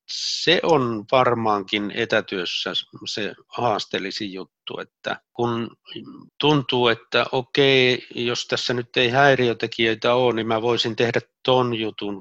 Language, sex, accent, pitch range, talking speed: Finnish, male, native, 110-130 Hz, 120 wpm